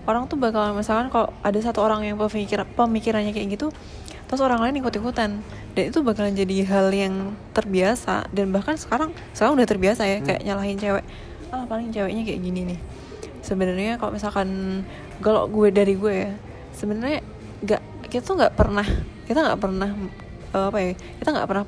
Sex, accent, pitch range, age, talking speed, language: female, native, 195-240 Hz, 20-39, 175 wpm, Indonesian